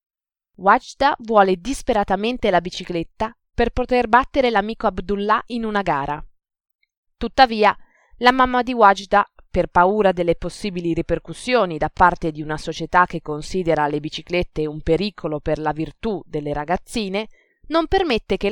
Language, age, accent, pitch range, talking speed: Italian, 20-39, native, 175-225 Hz, 135 wpm